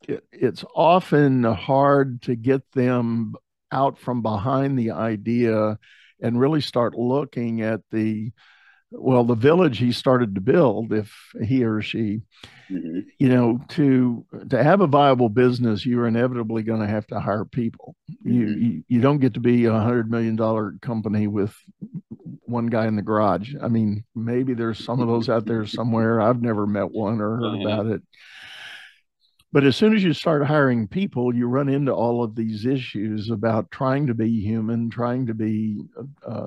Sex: male